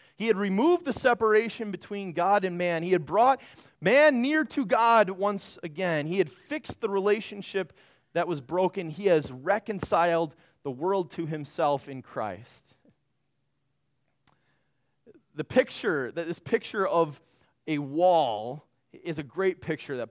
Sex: male